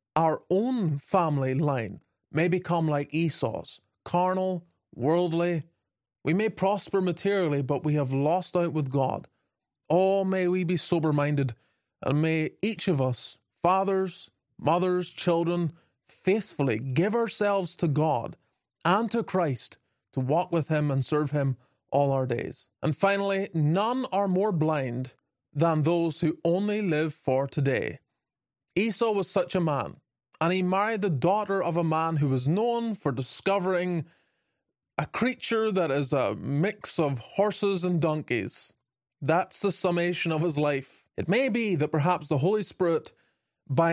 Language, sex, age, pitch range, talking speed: English, male, 30-49, 145-190 Hz, 150 wpm